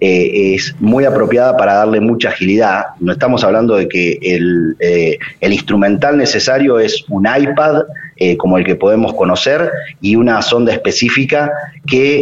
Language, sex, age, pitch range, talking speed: Spanish, male, 30-49, 100-140 Hz, 155 wpm